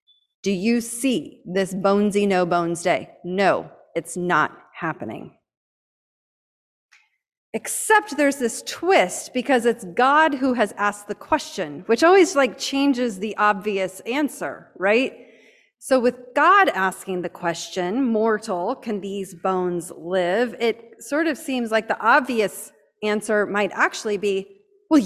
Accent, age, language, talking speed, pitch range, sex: American, 30-49, English, 130 wpm, 185-280 Hz, female